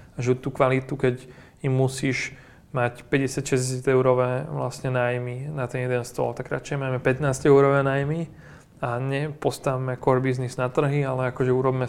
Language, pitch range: Slovak, 125-140 Hz